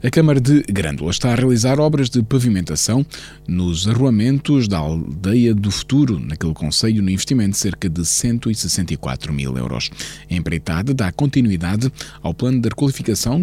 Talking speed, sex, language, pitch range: 150 wpm, male, Portuguese, 85-125 Hz